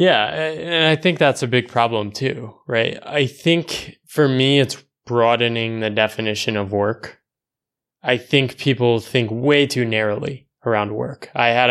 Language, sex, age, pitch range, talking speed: English, male, 20-39, 110-130 Hz, 160 wpm